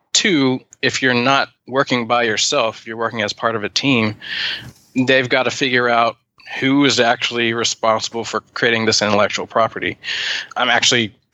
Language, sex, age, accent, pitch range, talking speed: English, male, 20-39, American, 110-120 Hz, 160 wpm